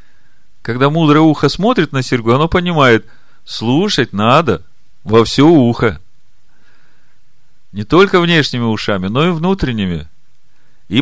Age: 40-59